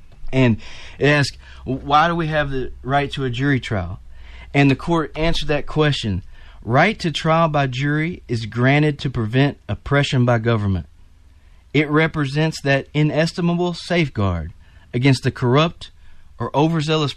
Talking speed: 145 wpm